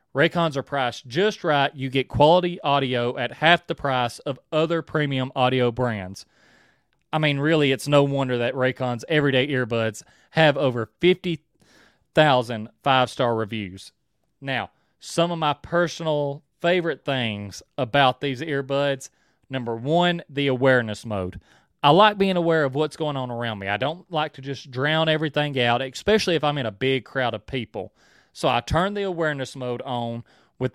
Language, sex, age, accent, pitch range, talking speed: English, male, 30-49, American, 125-160 Hz, 160 wpm